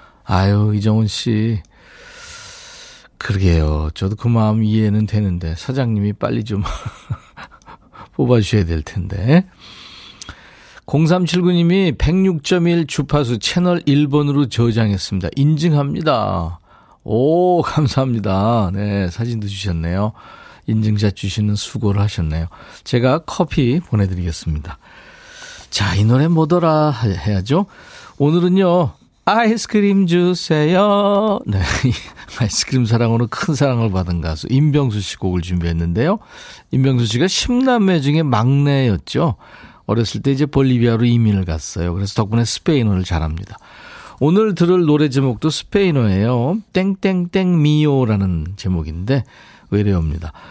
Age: 40-59